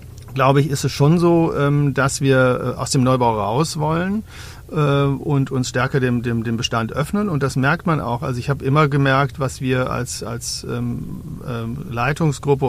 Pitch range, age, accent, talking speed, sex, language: 120-140 Hz, 40-59, German, 170 wpm, male, German